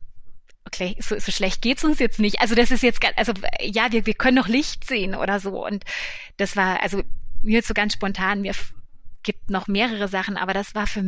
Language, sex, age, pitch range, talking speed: German, female, 30-49, 190-215 Hz, 215 wpm